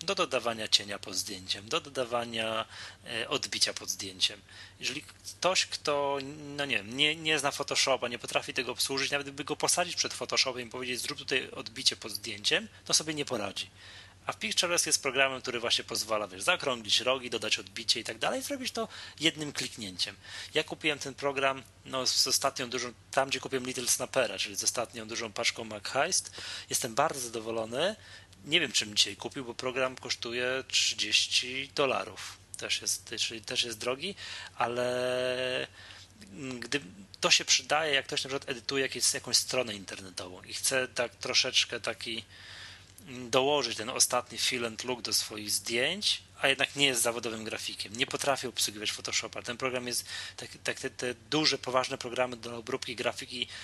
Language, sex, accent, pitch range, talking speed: Polish, male, native, 105-135 Hz, 165 wpm